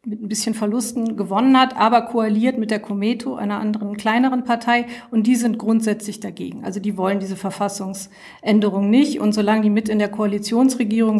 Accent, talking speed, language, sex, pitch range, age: German, 175 wpm, German, female, 200-225 Hz, 50-69